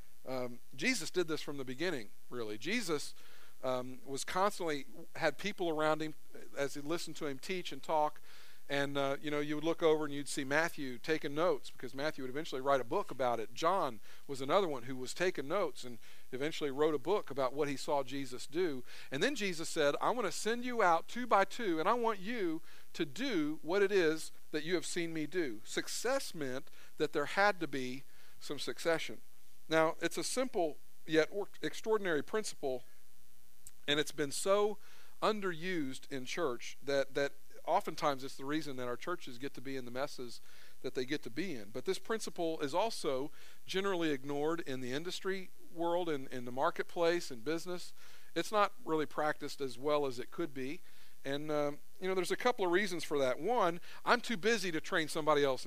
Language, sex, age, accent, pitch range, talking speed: English, male, 50-69, American, 140-180 Hz, 200 wpm